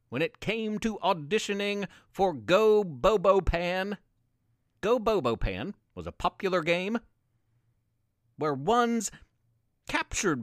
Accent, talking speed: American, 110 wpm